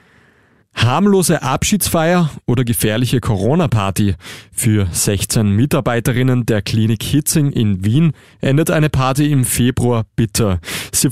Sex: male